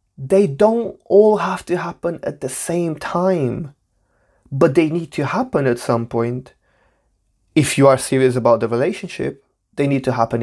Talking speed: 165 wpm